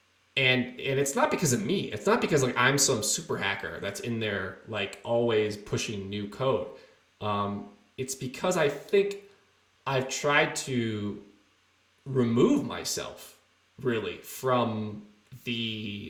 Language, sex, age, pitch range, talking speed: English, male, 20-39, 105-135 Hz, 135 wpm